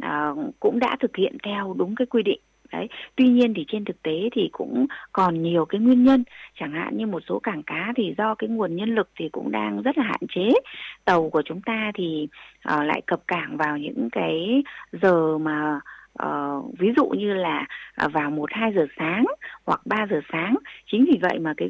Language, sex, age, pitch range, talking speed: Vietnamese, female, 20-39, 165-235 Hz, 210 wpm